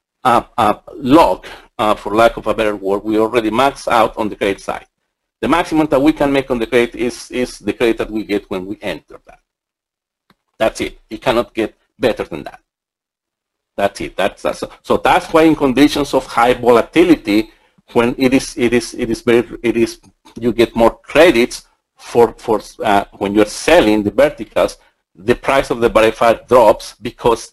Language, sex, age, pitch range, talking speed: English, male, 50-69, 110-140 Hz, 190 wpm